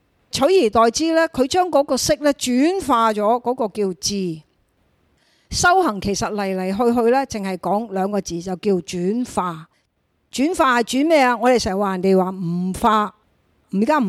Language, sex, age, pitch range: Chinese, female, 50-69, 200-265 Hz